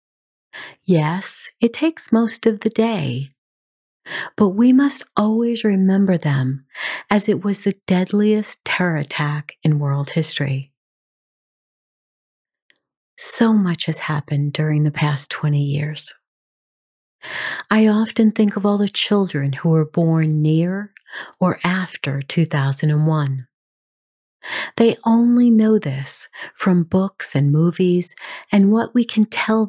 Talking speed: 120 wpm